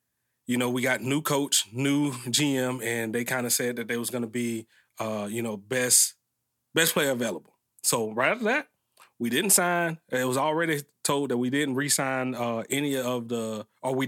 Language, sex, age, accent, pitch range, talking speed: English, male, 30-49, American, 115-130 Hz, 205 wpm